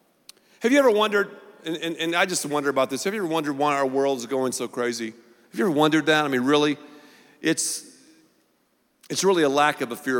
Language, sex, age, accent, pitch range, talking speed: English, male, 50-69, American, 155-215 Hz, 225 wpm